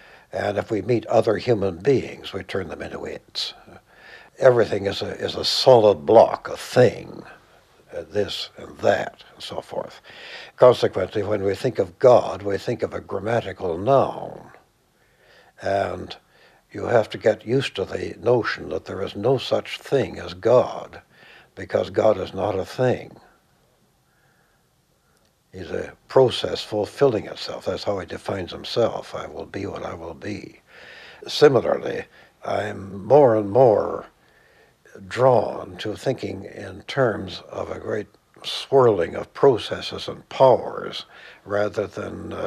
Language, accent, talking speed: English, American, 140 wpm